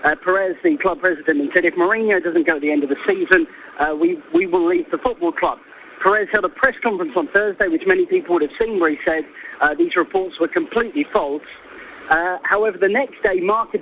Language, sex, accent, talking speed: English, male, British, 225 wpm